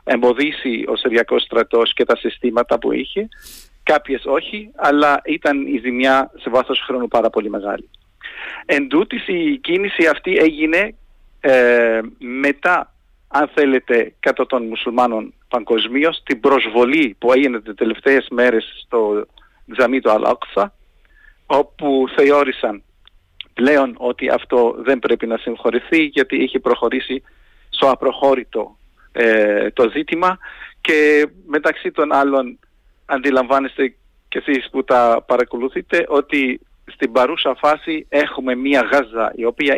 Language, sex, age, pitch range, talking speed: Greek, male, 50-69, 125-155 Hz, 120 wpm